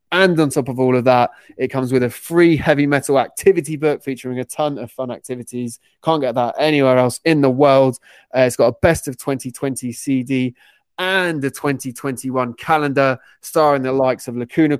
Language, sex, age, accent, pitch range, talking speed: English, male, 20-39, British, 120-145 Hz, 190 wpm